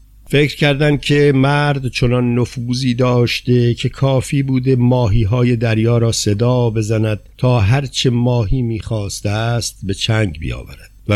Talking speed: 140 wpm